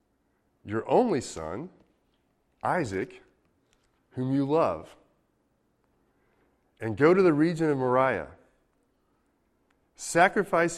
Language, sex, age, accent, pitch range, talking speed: English, male, 30-49, American, 90-140 Hz, 85 wpm